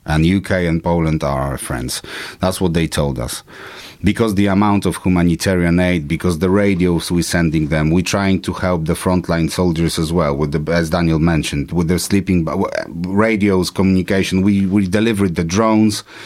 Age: 30-49